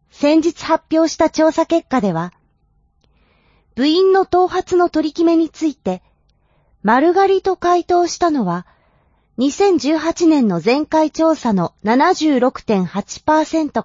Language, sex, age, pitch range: Japanese, female, 30-49, 205-330 Hz